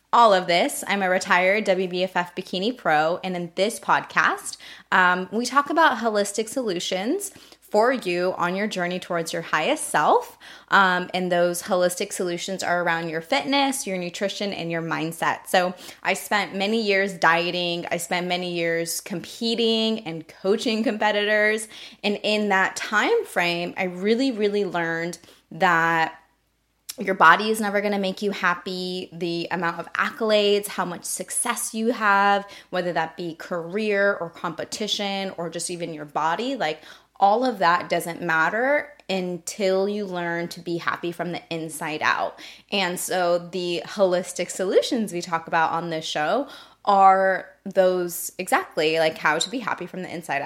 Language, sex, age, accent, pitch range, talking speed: English, female, 20-39, American, 170-210 Hz, 160 wpm